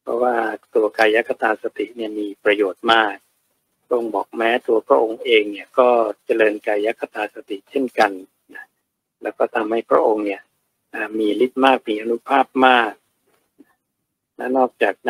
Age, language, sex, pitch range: 60-79, Thai, male, 110-135 Hz